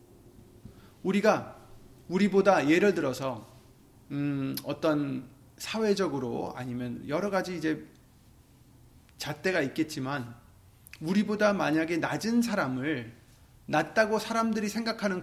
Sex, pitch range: male, 120-185 Hz